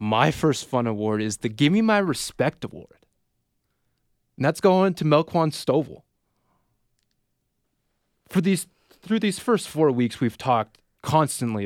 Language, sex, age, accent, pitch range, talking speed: English, male, 20-39, American, 105-140 Hz, 130 wpm